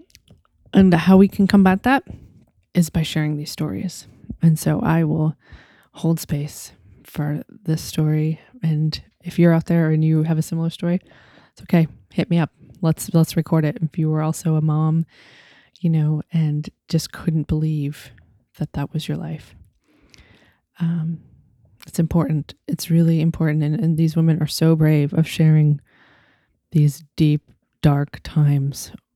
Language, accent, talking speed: English, American, 155 wpm